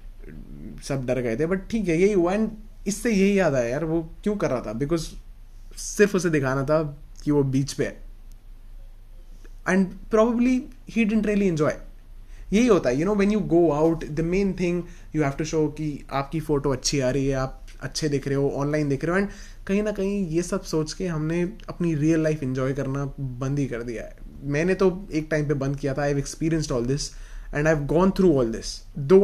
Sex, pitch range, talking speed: male, 130-175 Hz, 225 wpm